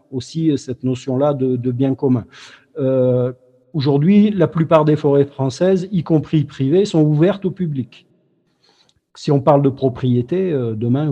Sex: male